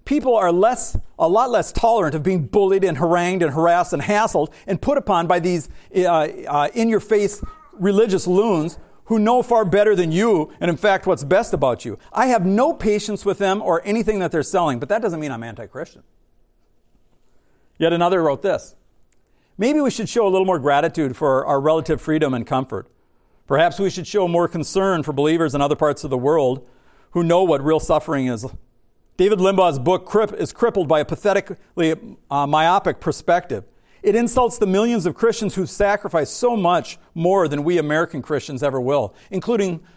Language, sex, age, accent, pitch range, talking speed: English, male, 50-69, American, 150-200 Hz, 185 wpm